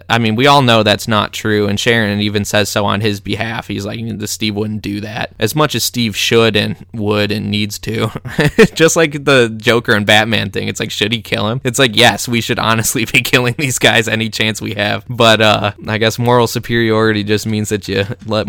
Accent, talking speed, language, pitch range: American, 230 wpm, English, 105-120 Hz